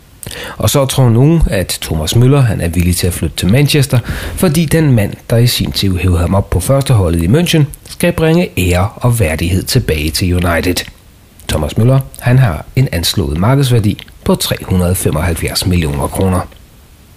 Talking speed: 170 wpm